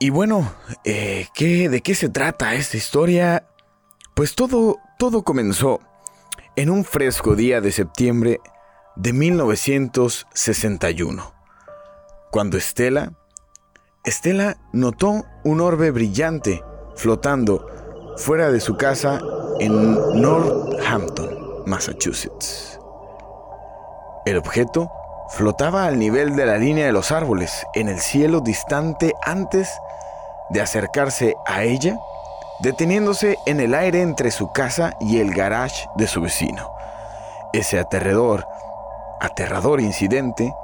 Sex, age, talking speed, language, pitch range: male, 30-49, 110 wpm, Spanish, 105-160 Hz